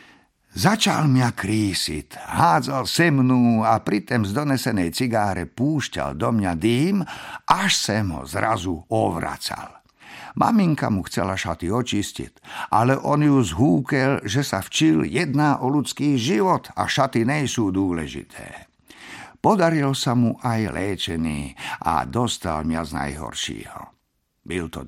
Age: 50-69